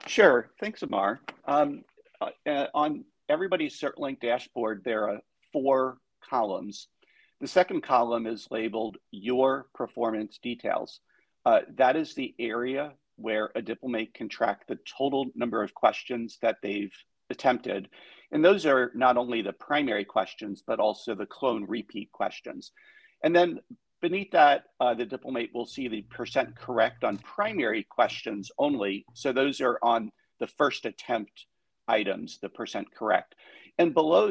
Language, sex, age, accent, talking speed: English, male, 50-69, American, 145 wpm